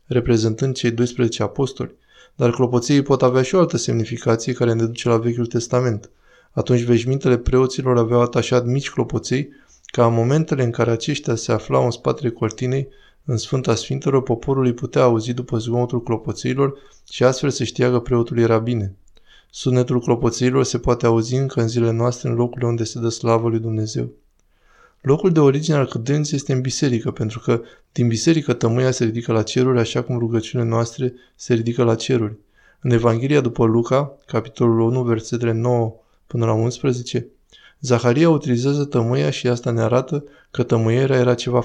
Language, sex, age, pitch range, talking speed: Romanian, male, 20-39, 115-130 Hz, 170 wpm